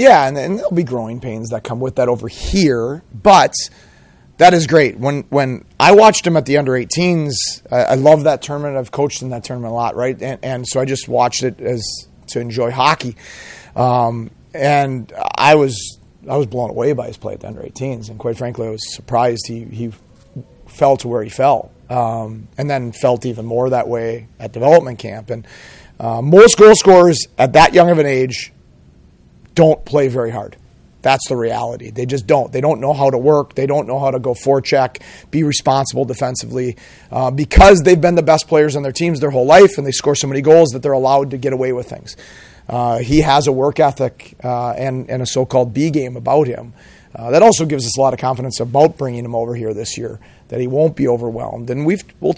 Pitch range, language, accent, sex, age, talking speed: 120-145 Hz, English, American, male, 30-49, 220 wpm